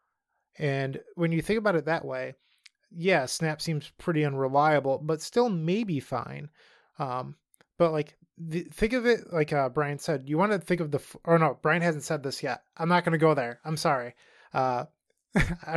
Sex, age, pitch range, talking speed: male, 20-39, 140-170 Hz, 200 wpm